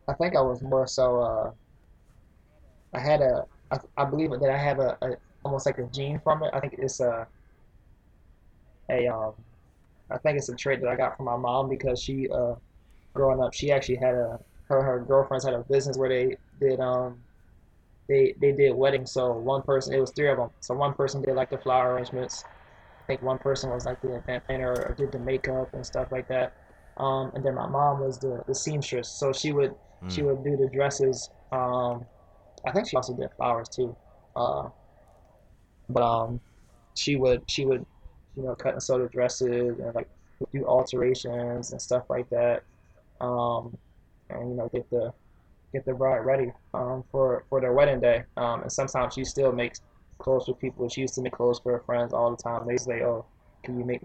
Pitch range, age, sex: 120-135 Hz, 20-39, male